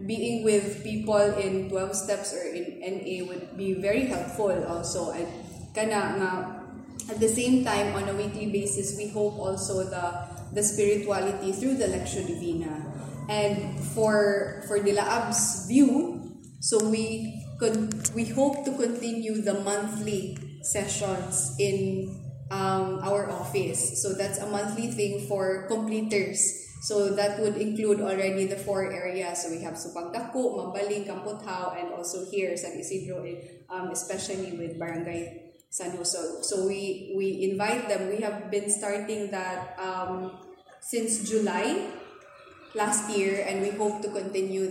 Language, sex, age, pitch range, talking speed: English, female, 20-39, 185-210 Hz, 140 wpm